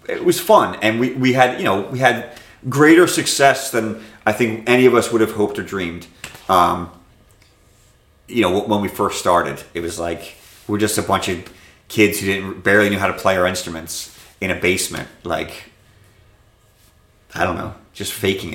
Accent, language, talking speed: American, English, 190 wpm